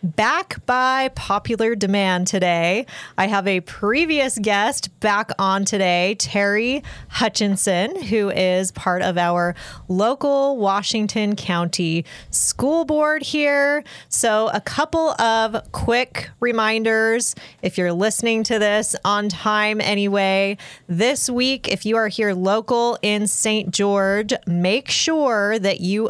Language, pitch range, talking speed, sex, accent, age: English, 185-225 Hz, 125 wpm, female, American, 20-39